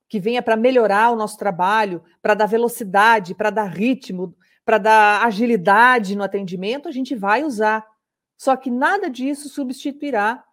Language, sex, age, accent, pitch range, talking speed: Portuguese, female, 40-59, Brazilian, 205-275 Hz, 155 wpm